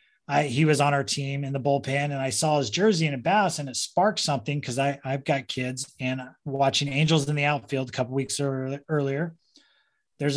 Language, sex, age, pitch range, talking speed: English, male, 20-39, 135-165 Hz, 220 wpm